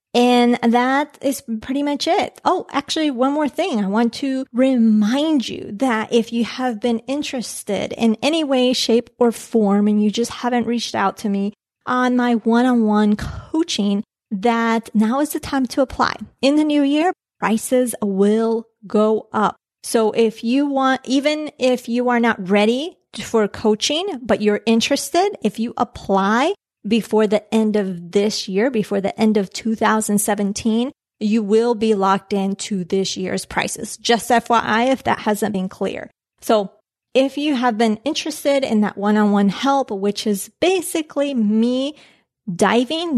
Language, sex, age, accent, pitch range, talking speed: English, female, 30-49, American, 210-265 Hz, 160 wpm